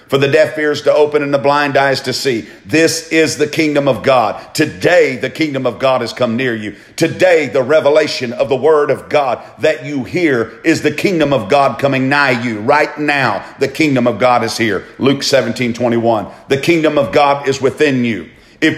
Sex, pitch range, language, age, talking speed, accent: male, 130-155 Hz, English, 50-69, 210 wpm, American